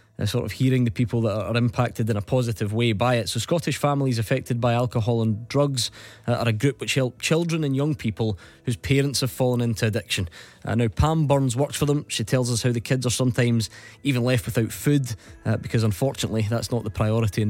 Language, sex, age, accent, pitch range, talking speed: English, male, 20-39, British, 120-175 Hz, 225 wpm